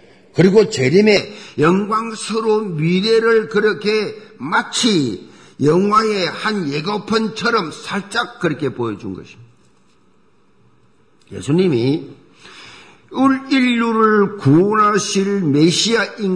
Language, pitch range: Korean, 150-215 Hz